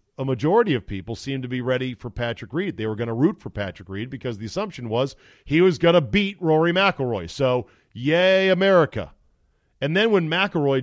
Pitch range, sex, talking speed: 100-140 Hz, male, 205 wpm